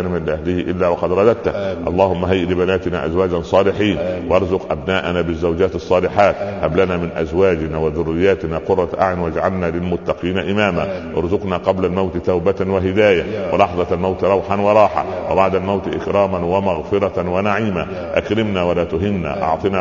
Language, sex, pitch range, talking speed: Arabic, male, 90-105 Hz, 125 wpm